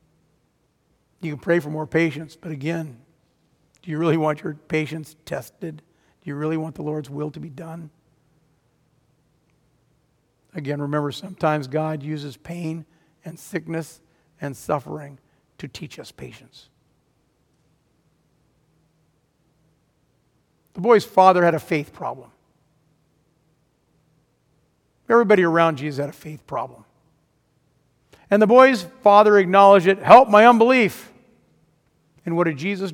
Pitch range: 150-185 Hz